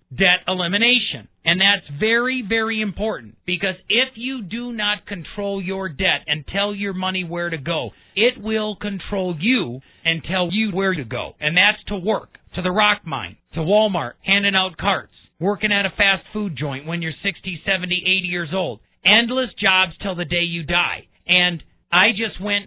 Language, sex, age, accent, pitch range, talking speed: English, male, 40-59, American, 175-210 Hz, 185 wpm